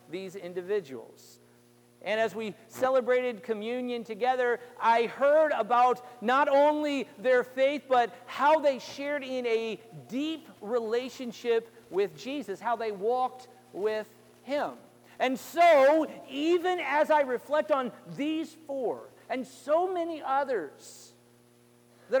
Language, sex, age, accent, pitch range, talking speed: English, male, 50-69, American, 205-285 Hz, 120 wpm